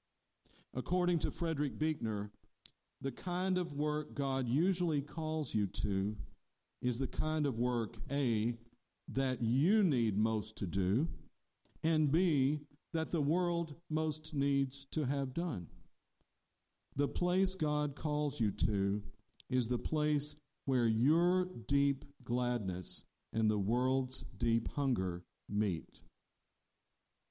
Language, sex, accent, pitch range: English, male, American, 115-150 Hz